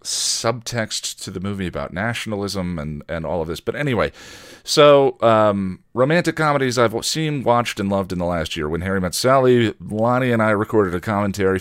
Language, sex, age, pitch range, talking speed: English, male, 40-59, 90-135 Hz, 185 wpm